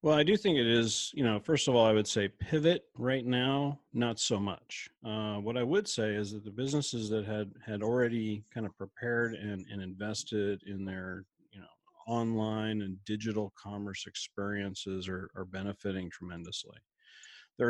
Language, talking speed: English, 180 wpm